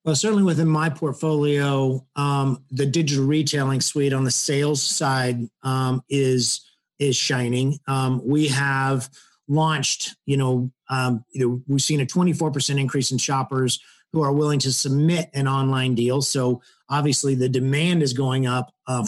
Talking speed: 155 wpm